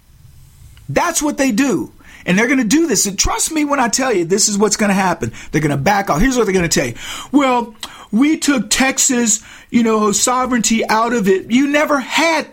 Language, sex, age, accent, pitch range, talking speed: English, male, 50-69, American, 195-265 Hz, 230 wpm